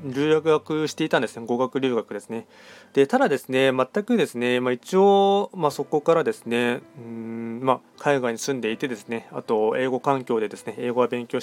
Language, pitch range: Japanese, 115-150 Hz